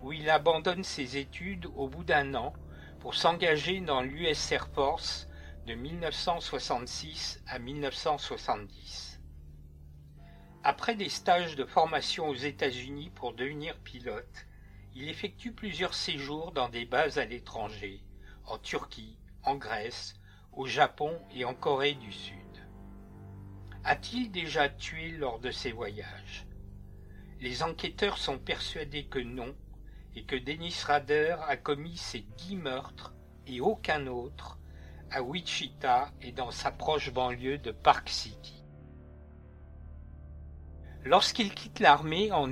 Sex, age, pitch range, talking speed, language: male, 50-69, 90-150 Hz, 125 wpm, French